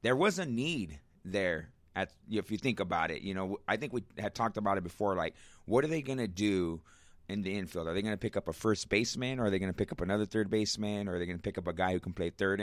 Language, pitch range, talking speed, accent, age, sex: English, 90-115 Hz, 300 wpm, American, 30-49, male